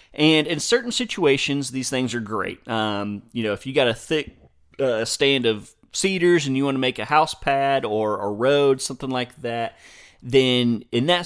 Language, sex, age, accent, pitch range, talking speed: English, male, 30-49, American, 110-140 Hz, 195 wpm